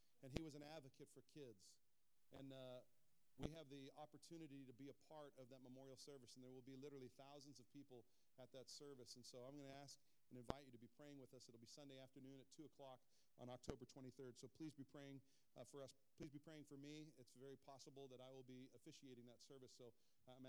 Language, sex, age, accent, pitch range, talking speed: English, male, 40-59, American, 130-150 Hz, 235 wpm